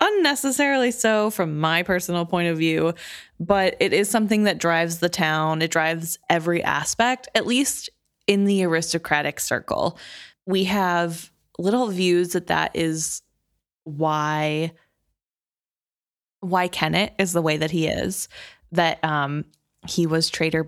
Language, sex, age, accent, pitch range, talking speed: English, female, 20-39, American, 155-190 Hz, 140 wpm